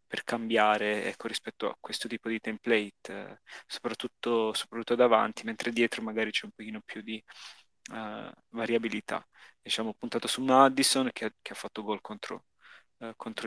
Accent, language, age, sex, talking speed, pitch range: native, Italian, 20-39, male, 140 wpm, 110-120 Hz